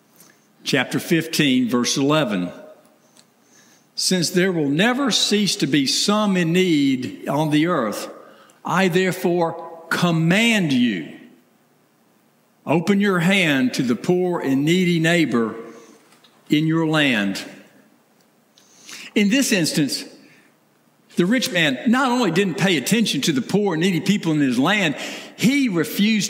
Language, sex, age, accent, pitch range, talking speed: English, male, 60-79, American, 170-230 Hz, 125 wpm